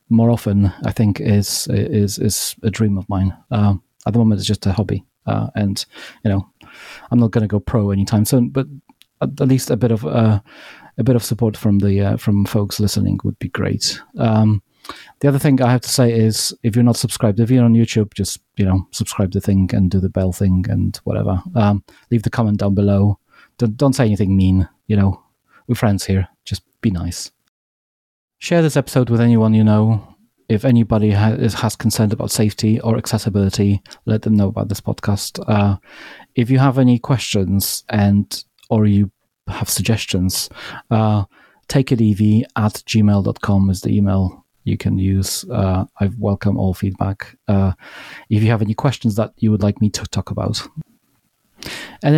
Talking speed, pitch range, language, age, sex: 190 wpm, 100-115 Hz, English, 30-49, male